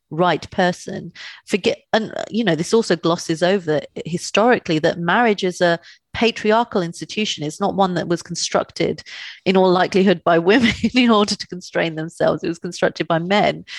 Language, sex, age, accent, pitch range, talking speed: English, female, 30-49, British, 160-200 Hz, 165 wpm